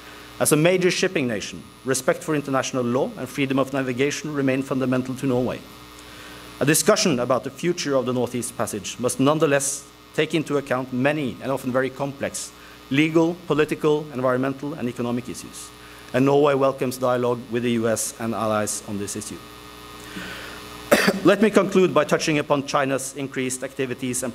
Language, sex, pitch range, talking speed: English, male, 120-150 Hz, 160 wpm